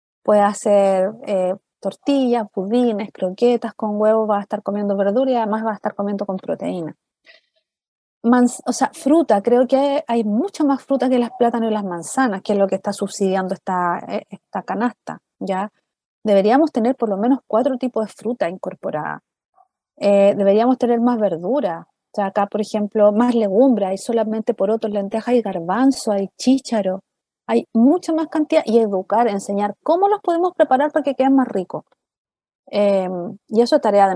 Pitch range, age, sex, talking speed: 200-245 Hz, 30-49, female, 180 wpm